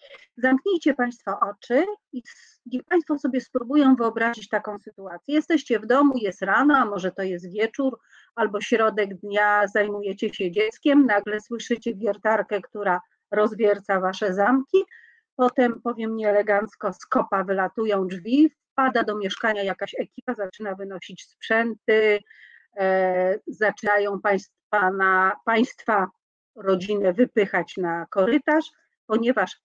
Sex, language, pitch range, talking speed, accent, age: female, Polish, 205-260 Hz, 115 wpm, native, 40-59